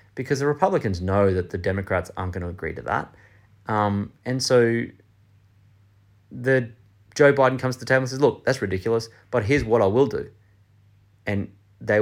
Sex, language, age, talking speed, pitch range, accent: male, English, 30-49, 180 wpm, 100-130 Hz, Australian